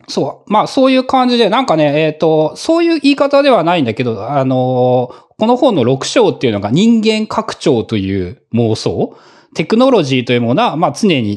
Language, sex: Japanese, male